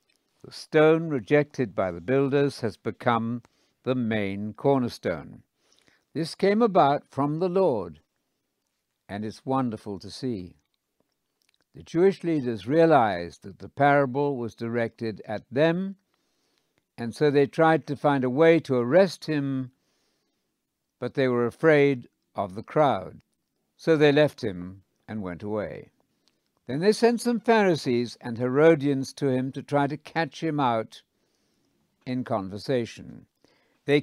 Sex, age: male, 60-79